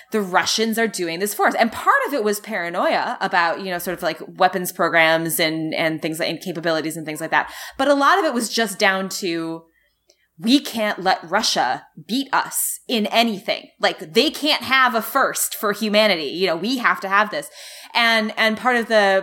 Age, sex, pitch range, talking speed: 20-39, female, 170-215 Hz, 210 wpm